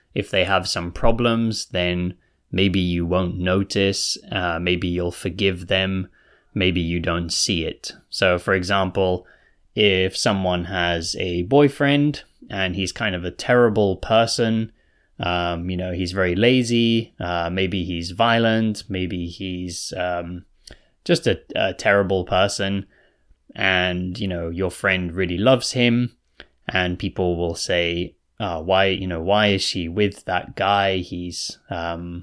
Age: 20-39